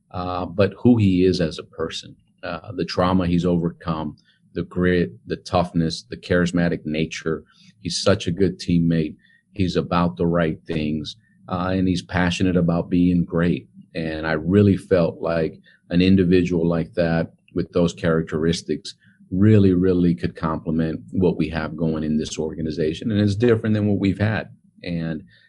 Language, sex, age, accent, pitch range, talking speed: English, male, 40-59, American, 80-90 Hz, 160 wpm